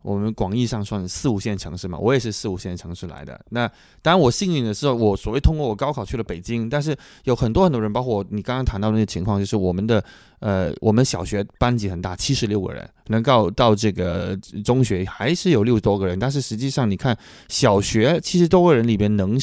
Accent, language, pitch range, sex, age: Chinese, English, 100-130 Hz, male, 20-39